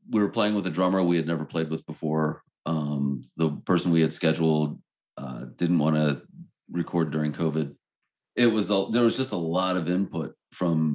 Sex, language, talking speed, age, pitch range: male, English, 190 wpm, 40-59, 75-90 Hz